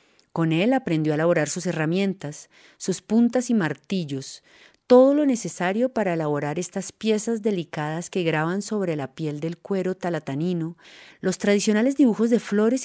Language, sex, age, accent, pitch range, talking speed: Spanish, female, 30-49, Colombian, 160-210 Hz, 150 wpm